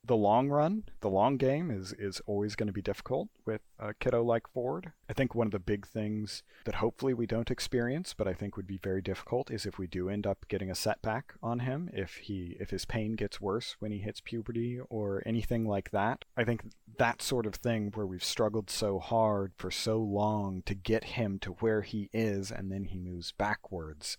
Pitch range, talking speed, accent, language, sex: 95-120 Hz, 220 wpm, American, English, male